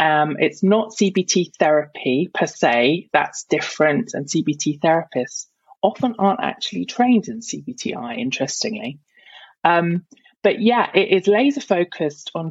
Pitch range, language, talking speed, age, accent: 155-220 Hz, English, 130 wpm, 20-39, British